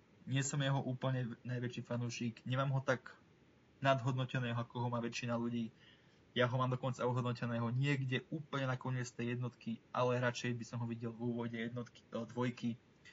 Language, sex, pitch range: Slovak, male, 115-130 Hz